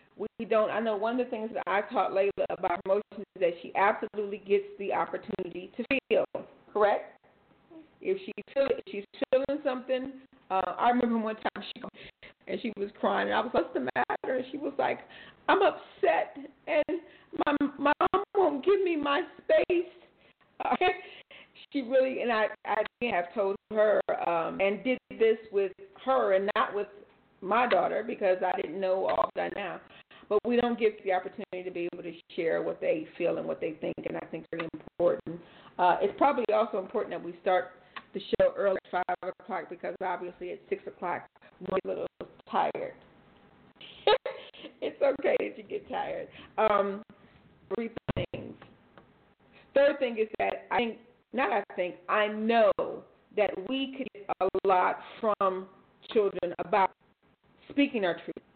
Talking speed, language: 170 wpm, English